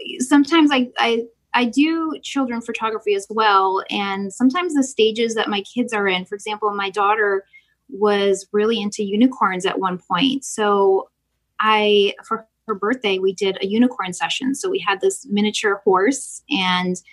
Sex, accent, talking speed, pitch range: female, American, 160 wpm, 195-250 Hz